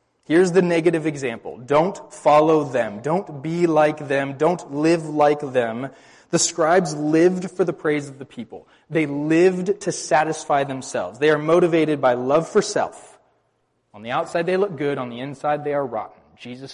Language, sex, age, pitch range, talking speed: English, male, 20-39, 140-175 Hz, 175 wpm